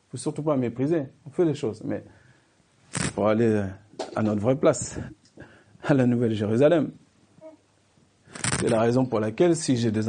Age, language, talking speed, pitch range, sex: 50-69, French, 170 wpm, 110-155 Hz, male